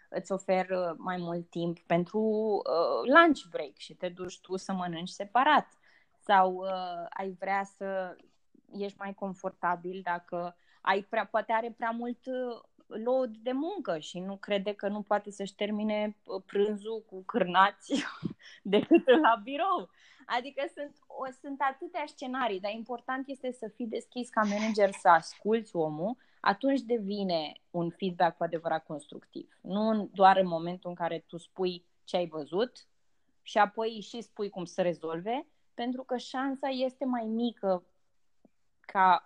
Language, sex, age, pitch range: Romanian, female, 20-39, 175-225 Hz